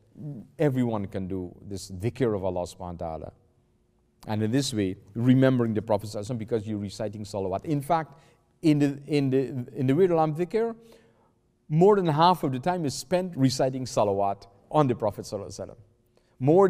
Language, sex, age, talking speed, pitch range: English, male, 40-59, 160 wpm, 105-140 Hz